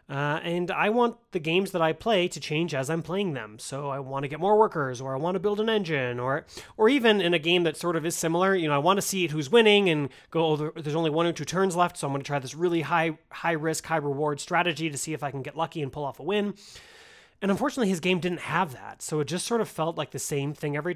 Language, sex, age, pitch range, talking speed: English, male, 30-49, 145-185 Hz, 290 wpm